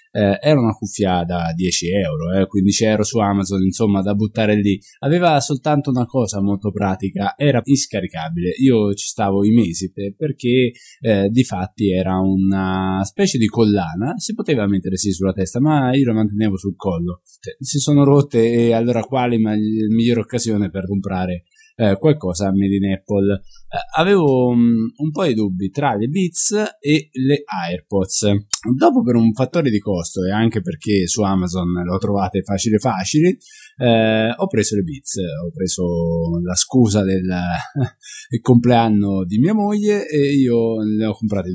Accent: native